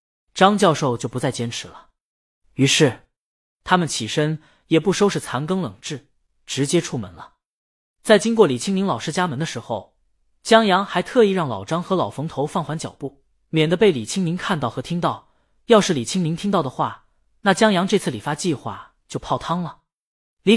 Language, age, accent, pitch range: Chinese, 20-39, native, 130-195 Hz